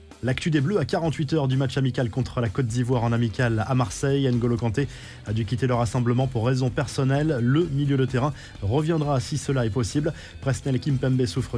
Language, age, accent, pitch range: French, 20-39, French, 120-140 Hz